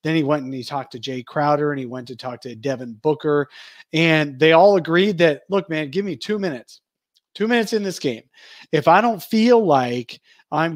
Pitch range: 135-170 Hz